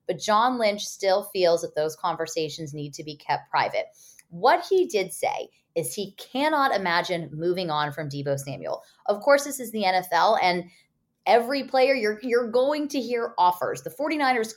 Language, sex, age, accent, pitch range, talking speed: English, female, 20-39, American, 165-240 Hz, 175 wpm